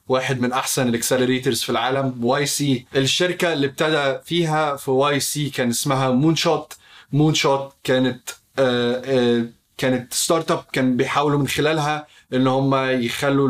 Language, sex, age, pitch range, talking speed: Arabic, male, 20-39, 125-145 Hz, 140 wpm